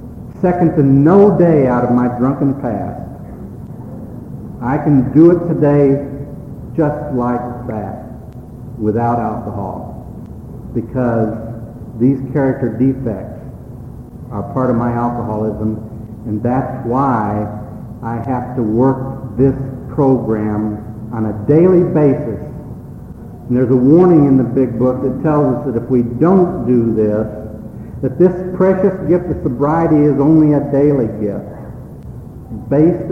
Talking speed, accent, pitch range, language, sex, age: 125 wpm, American, 115-145 Hz, English, male, 60-79